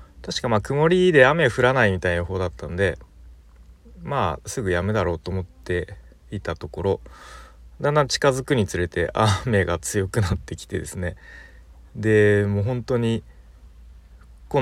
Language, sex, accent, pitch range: Japanese, male, native, 80-110 Hz